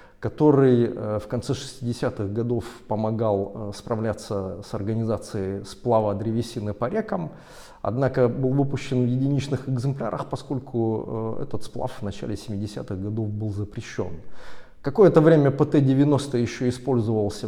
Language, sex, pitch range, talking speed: Russian, male, 110-135 Hz, 115 wpm